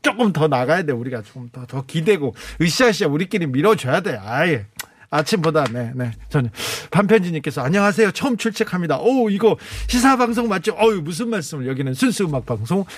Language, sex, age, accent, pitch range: Korean, male, 40-59, native, 140-210 Hz